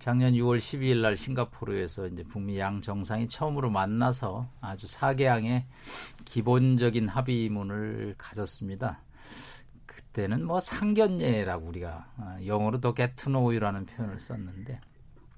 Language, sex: Korean, male